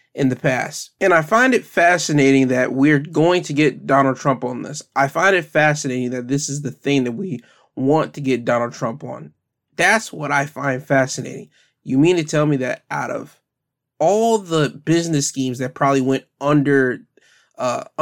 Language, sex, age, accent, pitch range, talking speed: English, male, 20-39, American, 130-160 Hz, 185 wpm